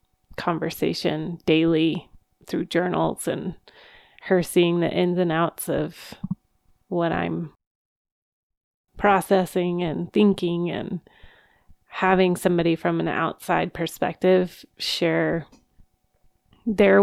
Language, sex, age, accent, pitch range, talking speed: English, female, 30-49, American, 160-185 Hz, 90 wpm